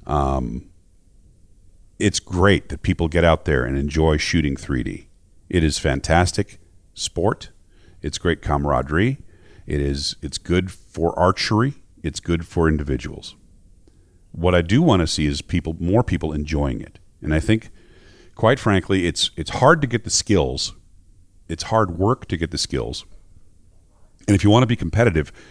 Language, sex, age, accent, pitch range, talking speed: English, male, 40-59, American, 80-105 Hz, 160 wpm